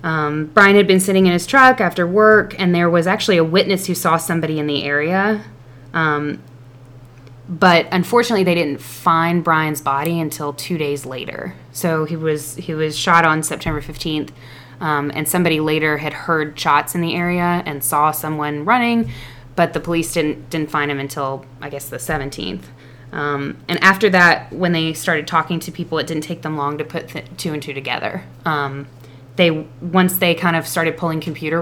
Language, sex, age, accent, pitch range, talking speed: English, female, 20-39, American, 145-175 Hz, 190 wpm